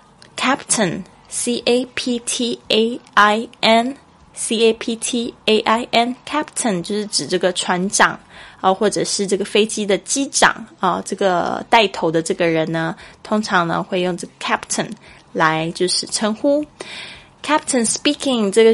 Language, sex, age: Chinese, female, 20-39